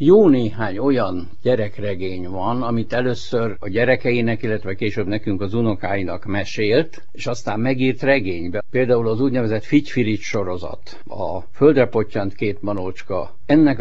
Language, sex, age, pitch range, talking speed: Hungarian, male, 60-79, 105-135 Hz, 130 wpm